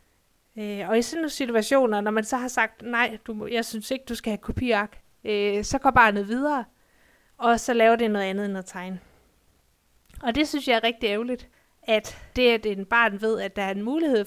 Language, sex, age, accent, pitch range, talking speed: Danish, female, 30-49, native, 210-245 Hz, 220 wpm